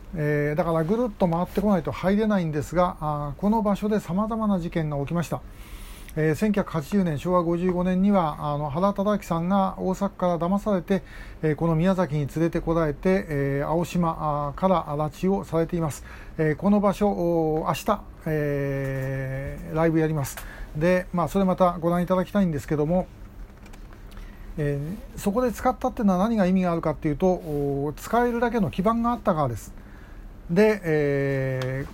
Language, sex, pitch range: Japanese, male, 150-200 Hz